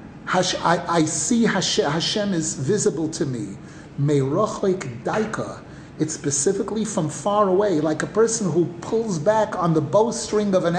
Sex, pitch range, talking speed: male, 160-215 Hz, 155 wpm